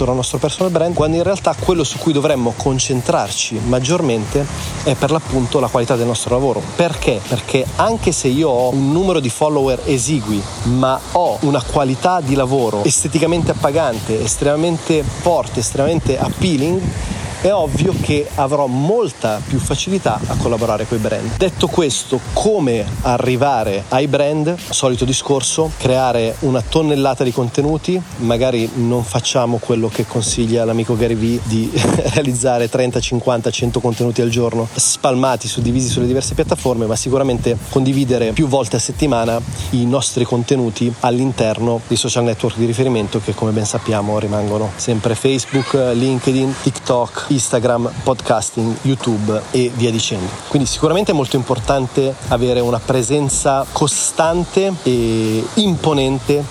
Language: Italian